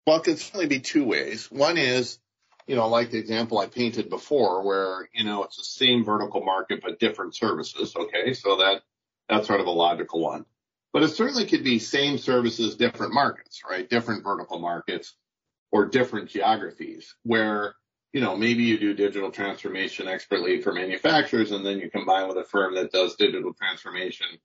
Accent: American